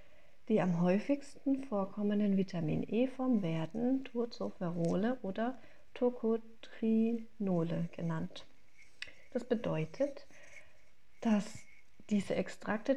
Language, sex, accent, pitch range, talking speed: German, female, German, 185-240 Hz, 70 wpm